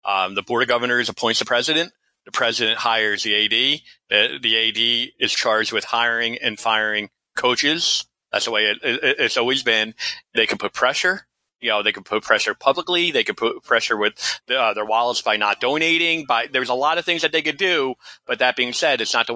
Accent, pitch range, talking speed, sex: American, 115-140 Hz, 210 wpm, male